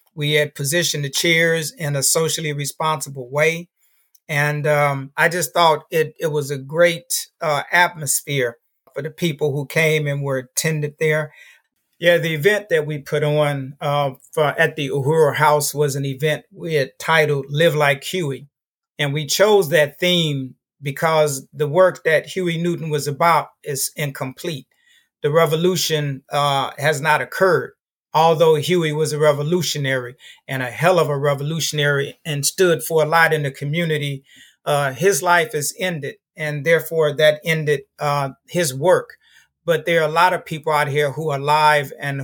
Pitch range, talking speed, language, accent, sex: 140-165 Hz, 170 wpm, English, American, male